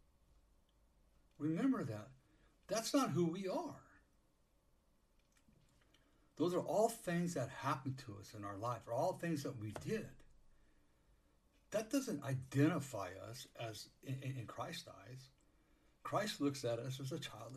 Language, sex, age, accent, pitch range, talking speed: English, male, 60-79, American, 110-170 Hz, 130 wpm